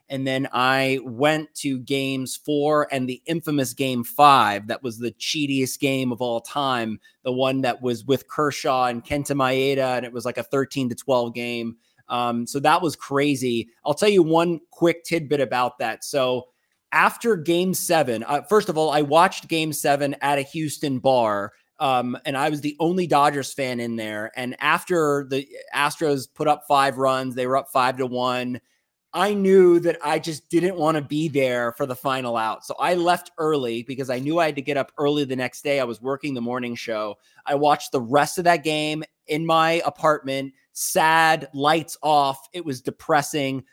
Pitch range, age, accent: 125-155 Hz, 30-49, American